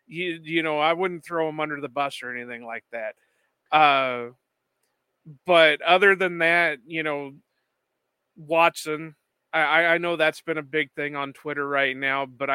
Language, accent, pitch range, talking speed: English, American, 140-165 Hz, 165 wpm